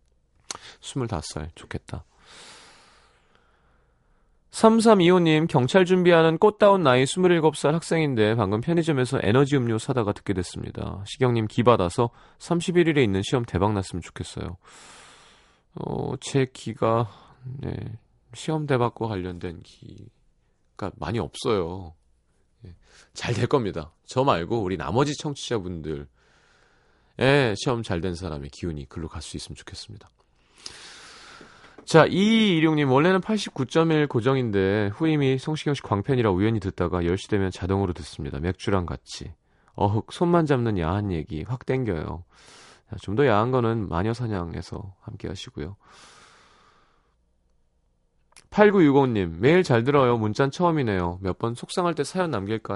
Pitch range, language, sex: 90-140 Hz, Korean, male